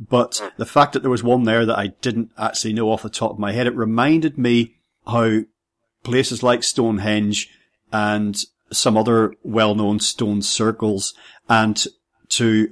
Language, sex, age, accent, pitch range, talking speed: English, male, 40-59, British, 105-120 Hz, 160 wpm